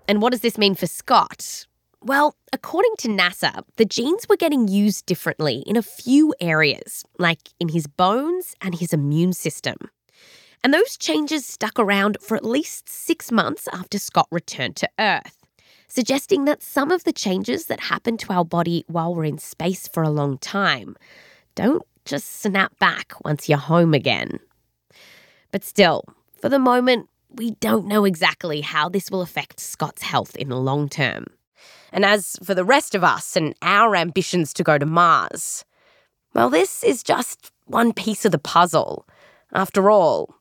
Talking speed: 170 wpm